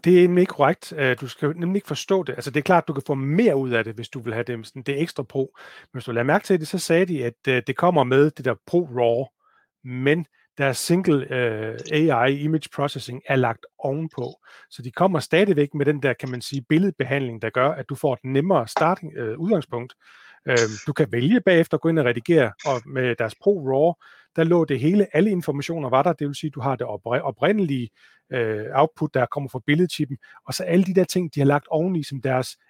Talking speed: 230 wpm